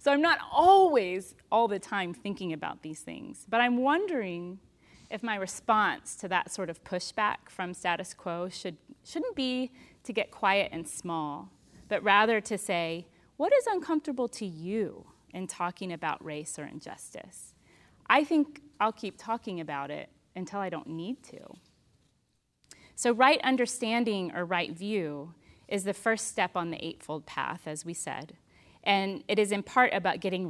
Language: English